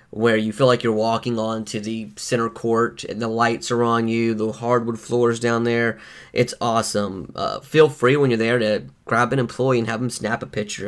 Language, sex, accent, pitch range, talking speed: English, male, American, 115-130 Hz, 220 wpm